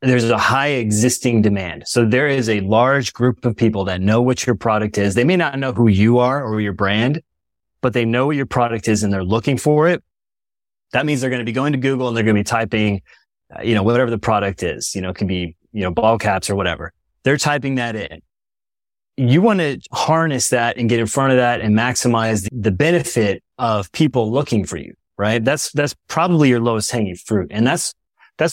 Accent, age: American, 30-49